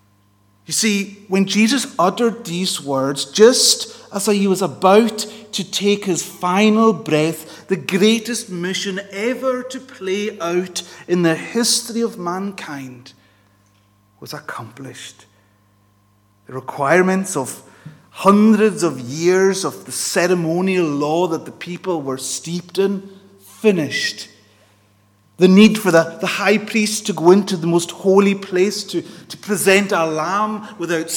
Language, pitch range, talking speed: English, 155-210 Hz, 130 wpm